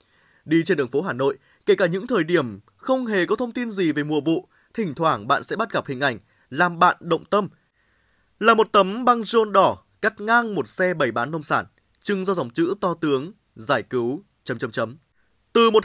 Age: 20-39